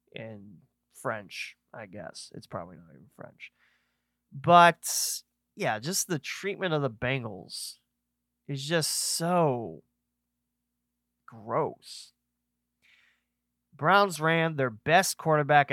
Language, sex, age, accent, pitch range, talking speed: English, male, 30-49, American, 100-150 Hz, 100 wpm